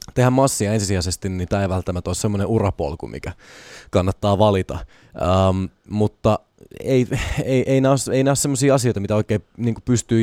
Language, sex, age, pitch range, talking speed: Finnish, male, 20-39, 95-125 Hz, 165 wpm